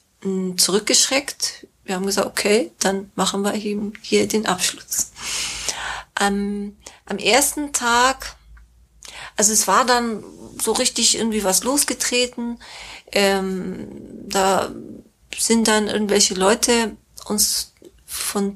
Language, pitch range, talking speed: German, 180-210 Hz, 105 wpm